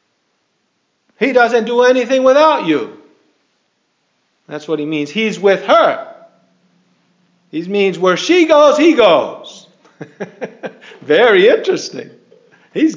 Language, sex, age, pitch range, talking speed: English, male, 50-69, 180-275 Hz, 105 wpm